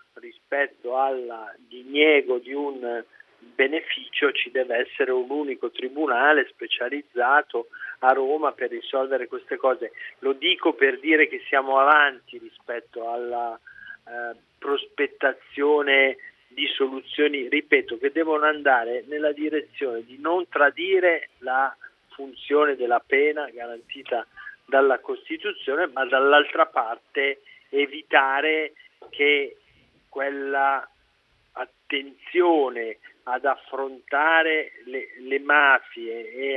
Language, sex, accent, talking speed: Italian, male, native, 100 wpm